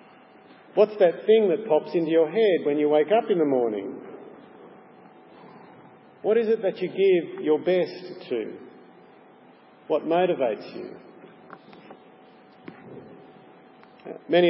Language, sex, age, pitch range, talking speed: English, male, 50-69, 155-195 Hz, 115 wpm